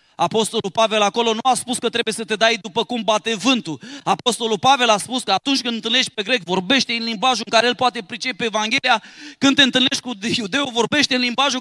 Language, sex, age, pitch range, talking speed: Romanian, male, 30-49, 205-260 Hz, 215 wpm